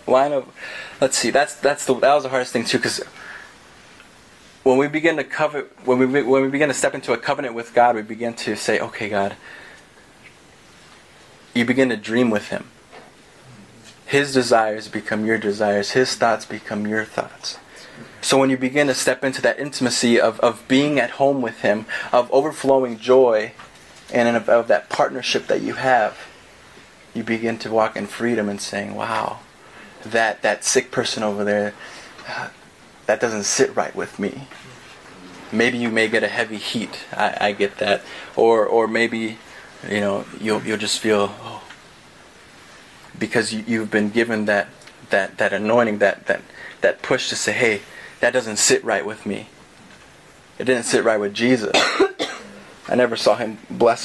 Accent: American